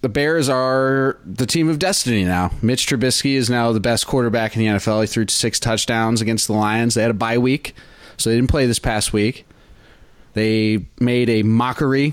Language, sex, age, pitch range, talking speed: English, male, 20-39, 105-130 Hz, 205 wpm